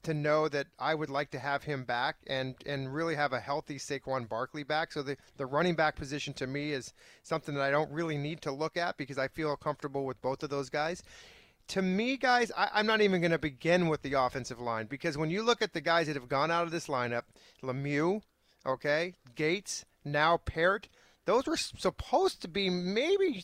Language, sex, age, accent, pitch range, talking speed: English, male, 40-59, American, 140-180 Hz, 220 wpm